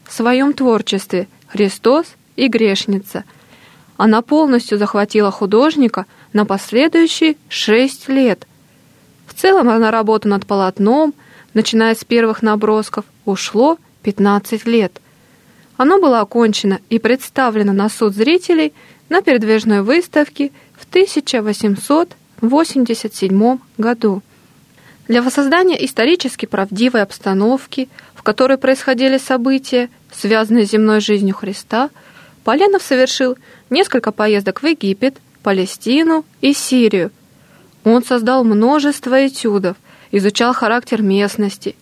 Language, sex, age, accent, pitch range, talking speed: Russian, female, 20-39, native, 205-265 Hz, 100 wpm